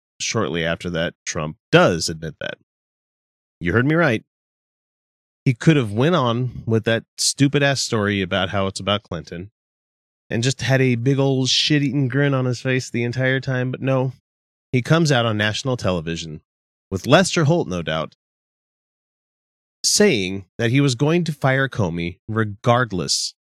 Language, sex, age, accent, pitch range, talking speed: English, male, 30-49, American, 90-135 Hz, 155 wpm